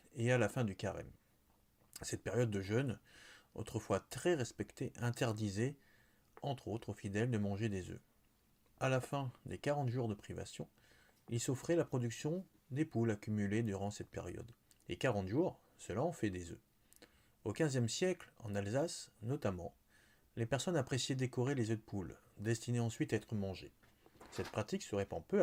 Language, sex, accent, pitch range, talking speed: French, male, French, 105-135 Hz, 170 wpm